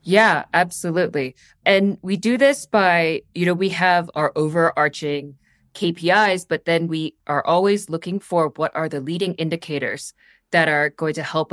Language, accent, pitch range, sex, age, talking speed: English, American, 150-195 Hz, female, 20-39, 160 wpm